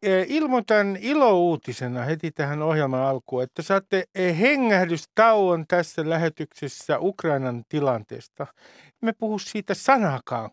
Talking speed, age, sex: 95 wpm, 50-69, male